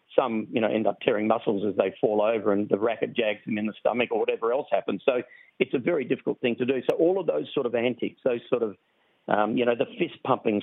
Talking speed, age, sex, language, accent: 260 wpm, 50-69, male, English, Australian